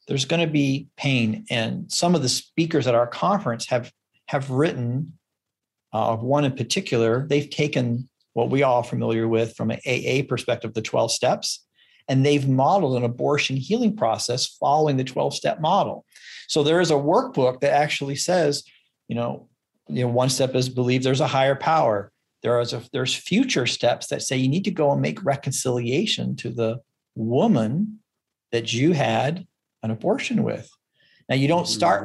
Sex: male